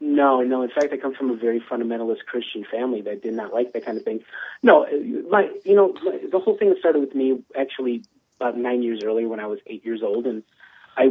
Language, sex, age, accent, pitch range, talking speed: English, male, 30-49, American, 110-135 Hz, 240 wpm